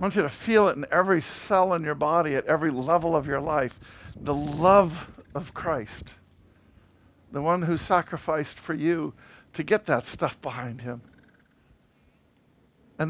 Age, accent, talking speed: 50-69, American, 160 wpm